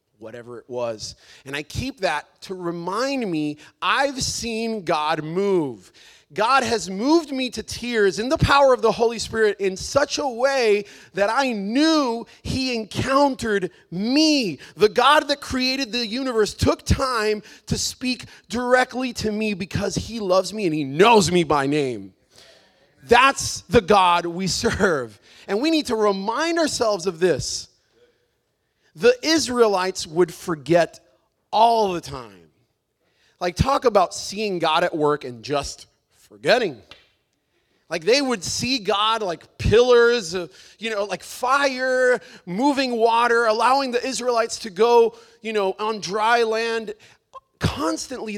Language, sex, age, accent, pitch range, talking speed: English, male, 30-49, American, 175-240 Hz, 140 wpm